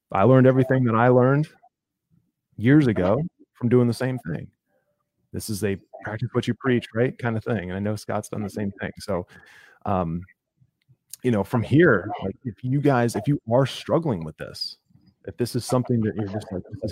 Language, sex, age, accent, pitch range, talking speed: English, male, 30-49, American, 100-130 Hz, 200 wpm